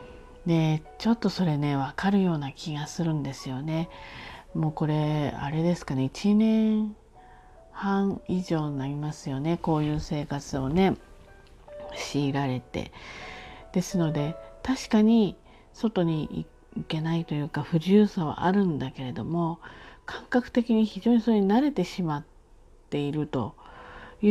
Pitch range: 145-205 Hz